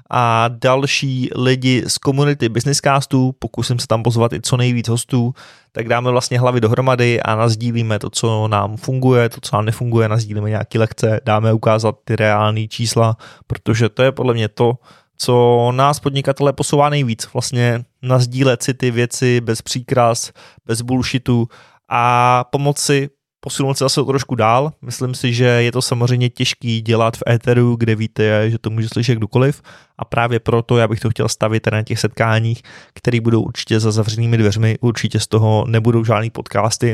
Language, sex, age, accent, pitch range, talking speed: Czech, male, 20-39, native, 110-130 Hz, 170 wpm